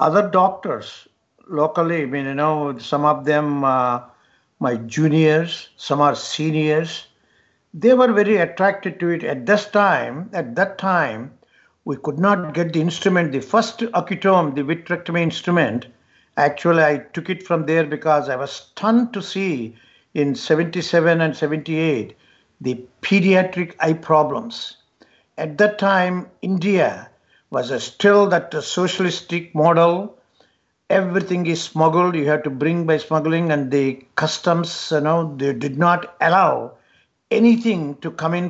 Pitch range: 150-180 Hz